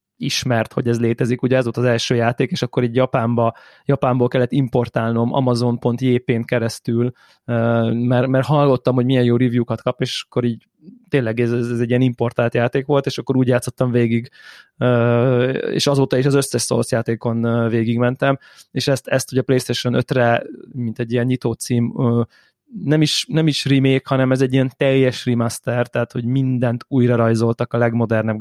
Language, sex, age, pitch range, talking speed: Hungarian, male, 20-39, 120-135 Hz, 170 wpm